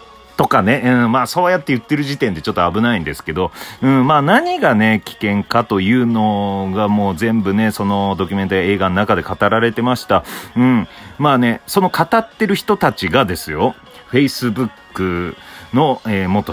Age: 40-59